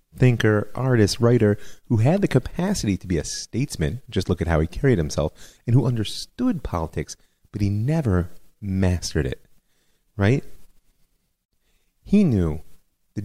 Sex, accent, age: male, American, 30-49